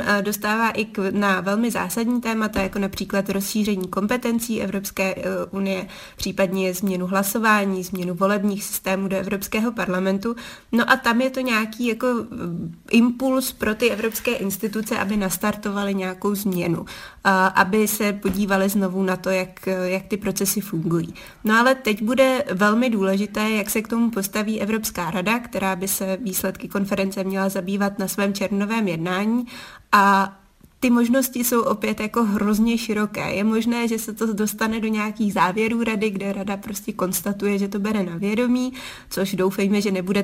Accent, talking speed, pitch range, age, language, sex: native, 155 wpm, 195-220 Hz, 20-39, Czech, female